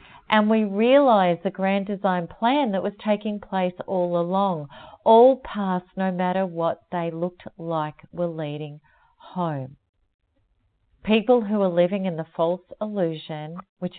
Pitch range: 160-215 Hz